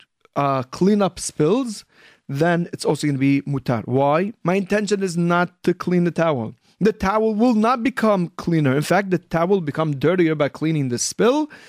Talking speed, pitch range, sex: 190 wpm, 145-195 Hz, male